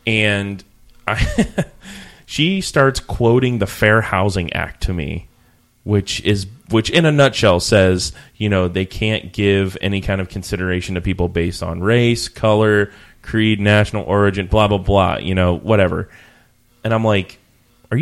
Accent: American